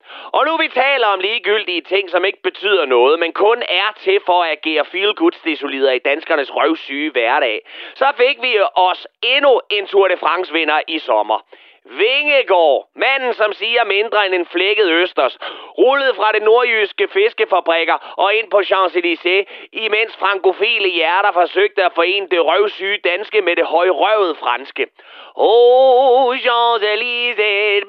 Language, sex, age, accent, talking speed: Danish, male, 30-49, native, 145 wpm